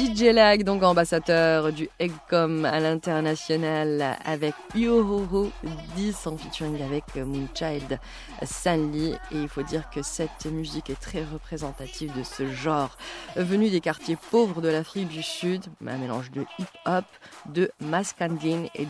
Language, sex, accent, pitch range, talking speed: French, female, French, 150-185 Hz, 140 wpm